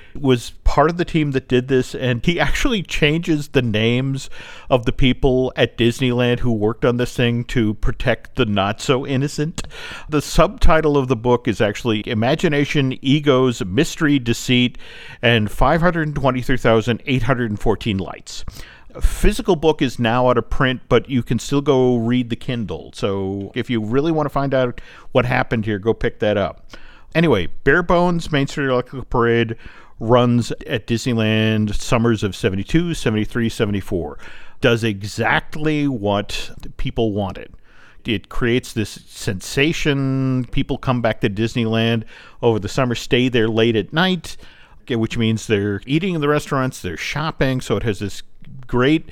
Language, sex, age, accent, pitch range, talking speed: English, male, 50-69, American, 115-140 Hz, 150 wpm